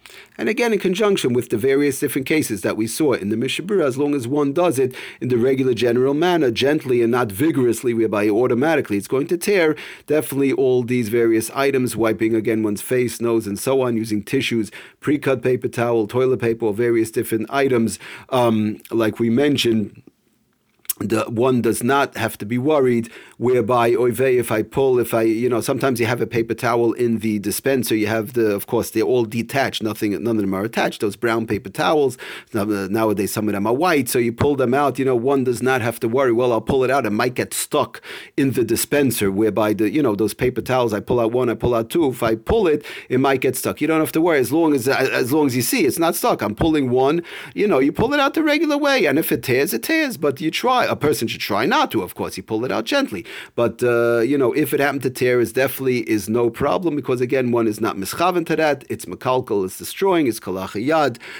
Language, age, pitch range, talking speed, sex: English, 40-59, 115-140 Hz, 230 wpm, male